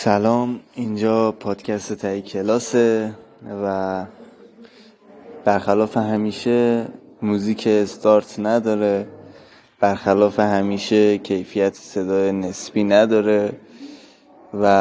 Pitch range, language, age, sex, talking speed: 100-120 Hz, Persian, 20-39, male, 75 wpm